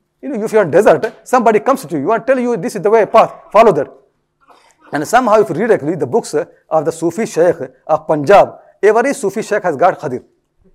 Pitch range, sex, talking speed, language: 180-230 Hz, male, 235 wpm, English